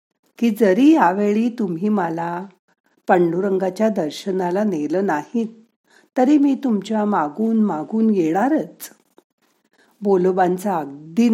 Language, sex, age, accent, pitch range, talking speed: Marathi, female, 50-69, native, 185-245 Hz, 90 wpm